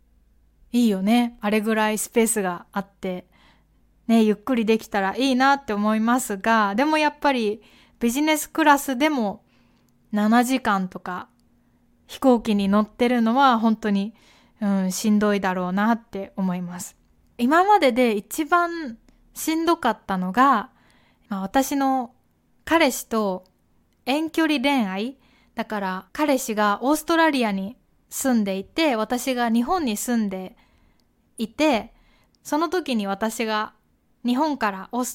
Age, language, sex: 20-39, Japanese, female